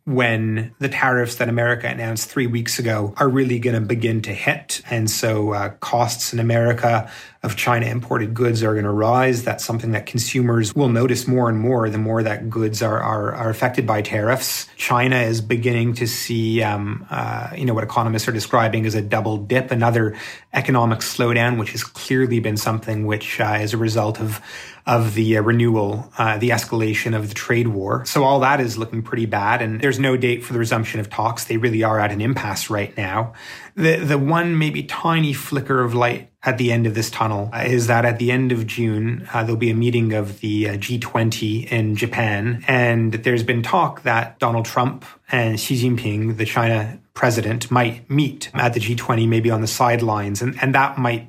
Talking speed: 200 wpm